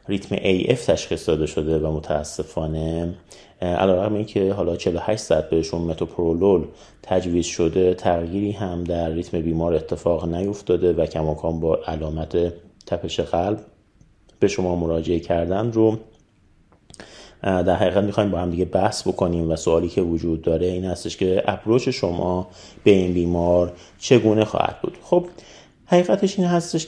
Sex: male